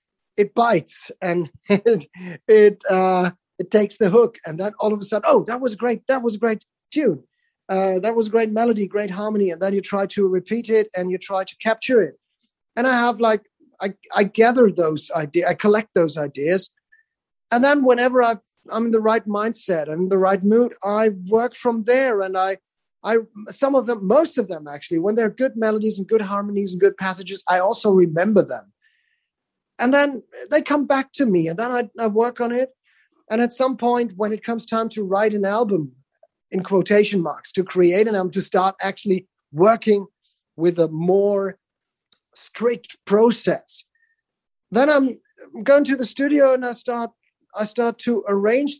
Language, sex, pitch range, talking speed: English, male, 195-240 Hz, 190 wpm